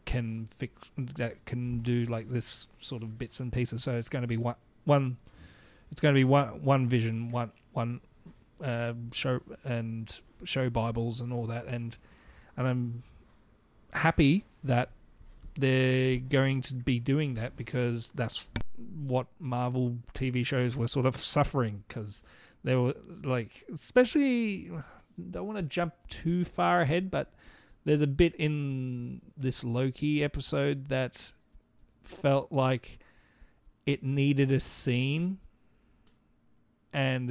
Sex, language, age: male, English, 30-49